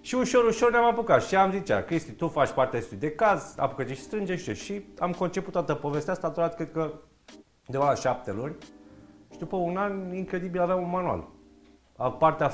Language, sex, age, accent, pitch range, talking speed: Romanian, male, 30-49, native, 110-155 Hz, 180 wpm